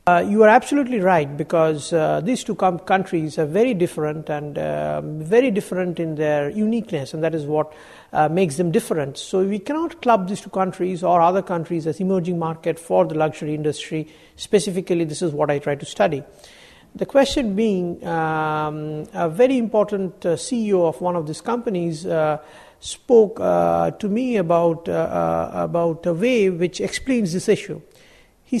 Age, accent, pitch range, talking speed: 50-69, Indian, 160-210 Hz, 175 wpm